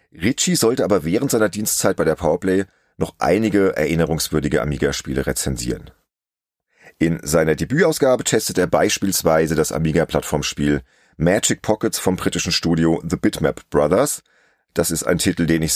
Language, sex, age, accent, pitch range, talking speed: German, male, 40-59, German, 75-105 Hz, 135 wpm